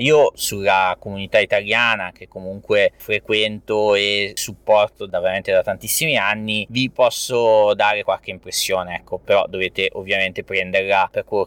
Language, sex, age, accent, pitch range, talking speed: Italian, male, 20-39, native, 105-140 Hz, 135 wpm